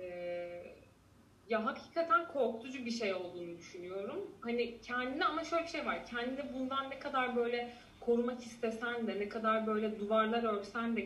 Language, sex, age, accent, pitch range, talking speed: Turkish, female, 30-49, native, 195-260 Hz, 150 wpm